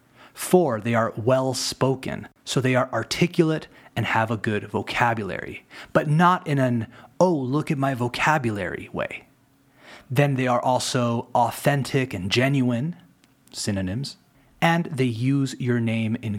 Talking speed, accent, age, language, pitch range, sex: 120 wpm, American, 30-49, Spanish, 115-145 Hz, male